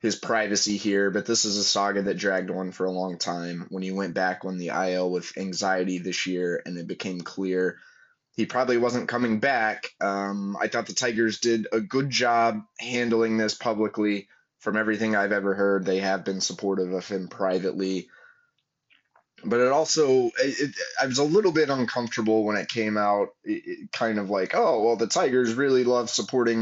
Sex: male